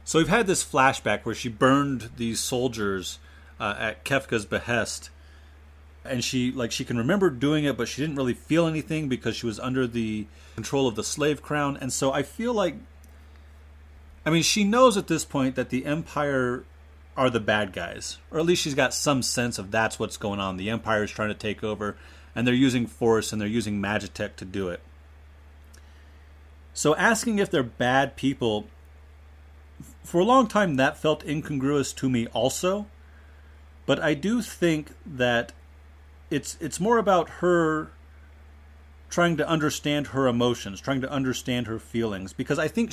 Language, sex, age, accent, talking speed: English, male, 30-49, American, 175 wpm